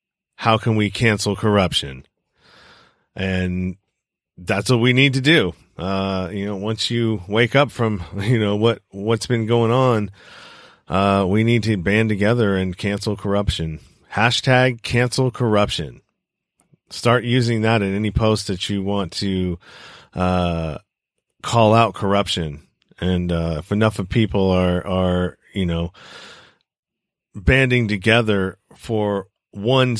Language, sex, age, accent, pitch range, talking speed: English, male, 40-59, American, 95-115 Hz, 135 wpm